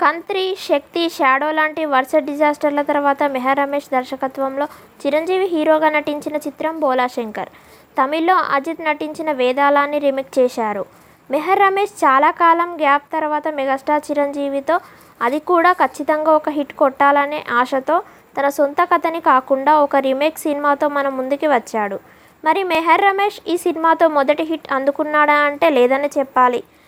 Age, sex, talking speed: 20-39, female, 125 wpm